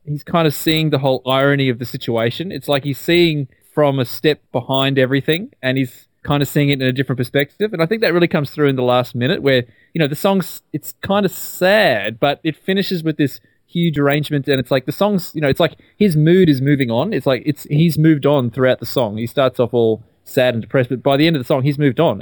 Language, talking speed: English, 260 wpm